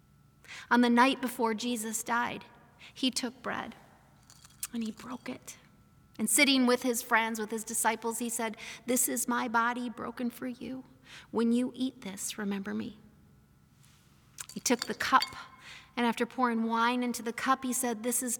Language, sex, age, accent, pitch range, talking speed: English, female, 40-59, American, 225-250 Hz, 165 wpm